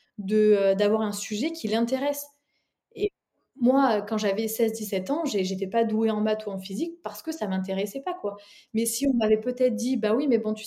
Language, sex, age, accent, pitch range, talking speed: French, female, 20-39, French, 195-235 Hz, 215 wpm